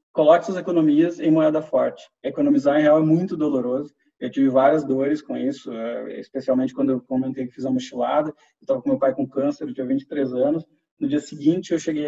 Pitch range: 135-210 Hz